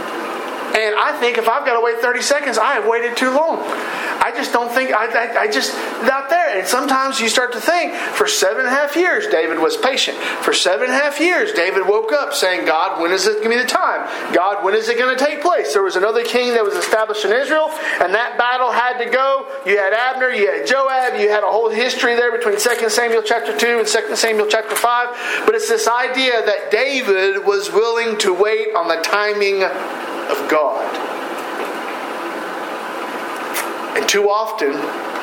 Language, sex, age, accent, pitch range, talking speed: English, male, 50-69, American, 205-260 Hz, 210 wpm